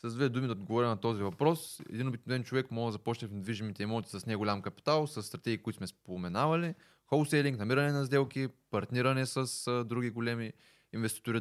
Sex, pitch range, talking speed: male, 105-130 Hz, 185 wpm